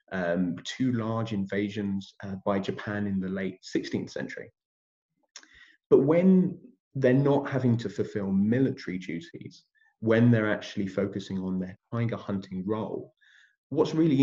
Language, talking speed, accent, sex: English, 135 wpm, British, male